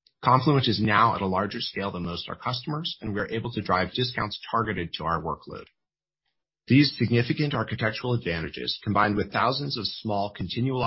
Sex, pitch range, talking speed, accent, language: male, 90-120 Hz, 175 wpm, American, English